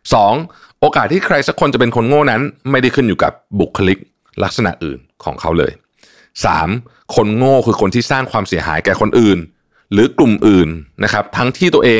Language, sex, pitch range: Thai, male, 90-120 Hz